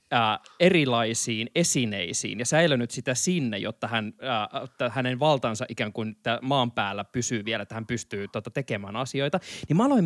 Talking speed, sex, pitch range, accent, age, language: 160 wpm, male, 120-165 Hz, native, 20-39, Finnish